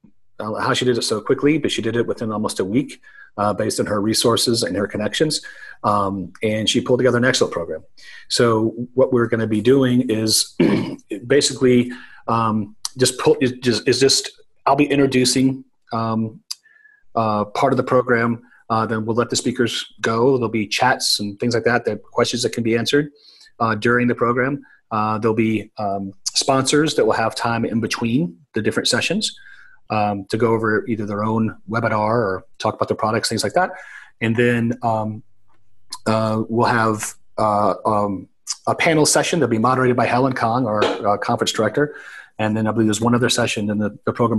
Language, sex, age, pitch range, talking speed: English, male, 30-49, 110-130 Hz, 190 wpm